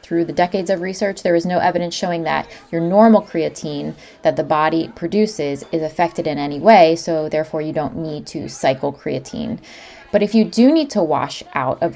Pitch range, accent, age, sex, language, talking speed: 155-200 Hz, American, 20-39, female, English, 200 wpm